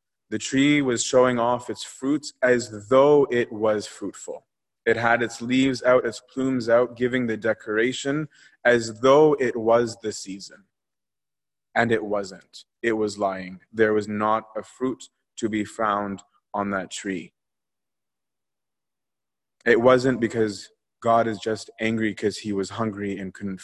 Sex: male